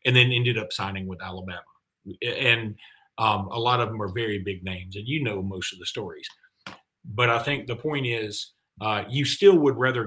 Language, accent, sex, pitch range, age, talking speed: English, American, male, 110-135 Hz, 40-59, 210 wpm